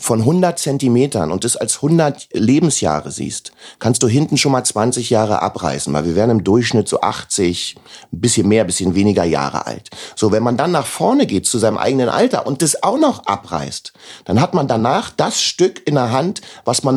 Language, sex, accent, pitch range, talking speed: German, male, German, 110-160 Hz, 210 wpm